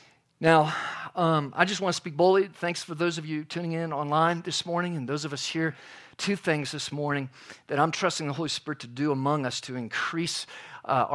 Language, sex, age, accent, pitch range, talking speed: English, male, 50-69, American, 155-195 Hz, 215 wpm